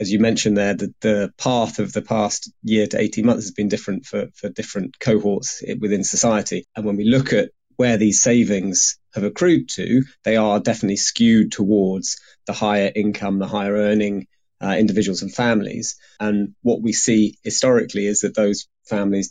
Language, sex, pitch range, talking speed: English, male, 100-115 Hz, 180 wpm